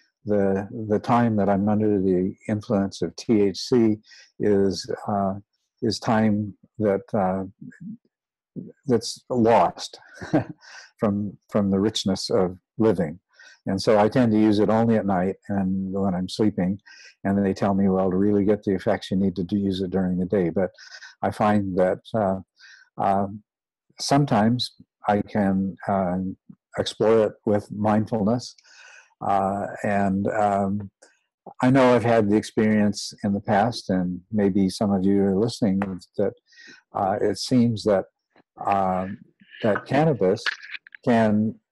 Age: 60-79